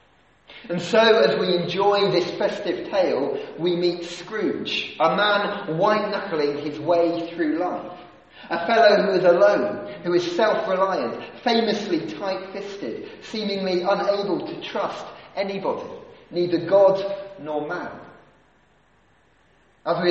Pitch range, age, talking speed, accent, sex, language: 170-205 Hz, 30-49, 115 wpm, British, male, English